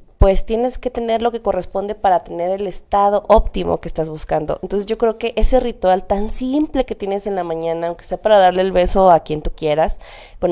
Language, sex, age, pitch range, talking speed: Spanish, female, 20-39, 175-220 Hz, 220 wpm